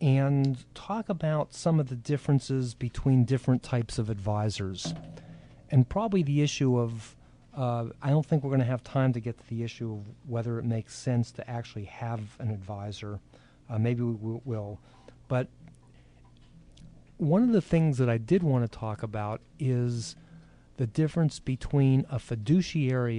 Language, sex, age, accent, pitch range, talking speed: English, male, 40-59, American, 110-130 Hz, 165 wpm